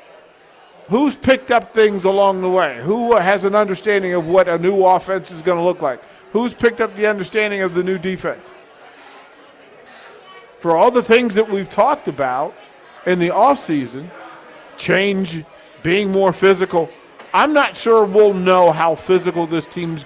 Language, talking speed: English, 160 wpm